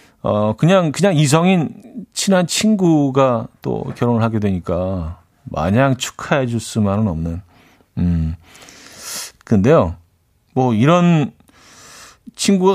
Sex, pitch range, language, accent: male, 110-150 Hz, Korean, native